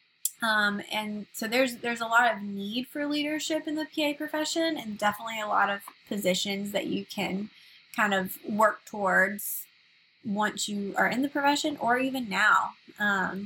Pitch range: 205-250 Hz